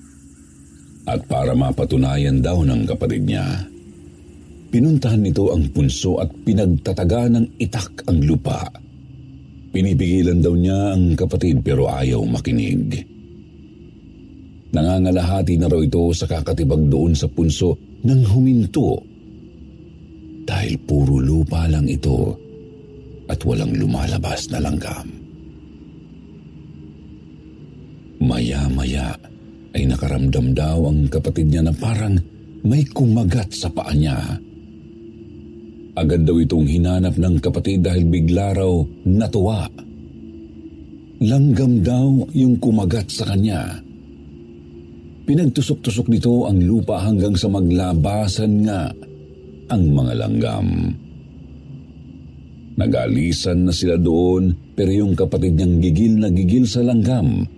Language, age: Filipino, 50-69